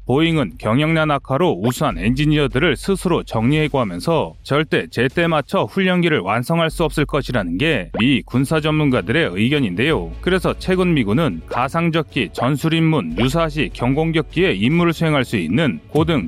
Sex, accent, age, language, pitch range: male, native, 30-49, Korean, 135-180 Hz